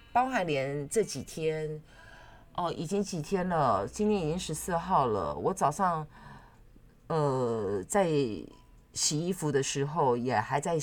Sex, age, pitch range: female, 30-49, 140-185 Hz